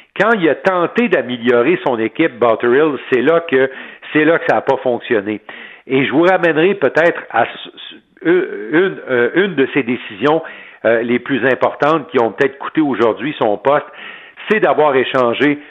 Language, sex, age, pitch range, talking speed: French, male, 50-69, 120-155 Hz, 160 wpm